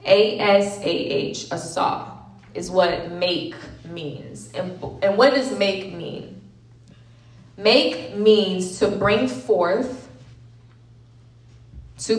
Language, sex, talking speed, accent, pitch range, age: English, female, 95 wpm, American, 120-195 Hz, 20-39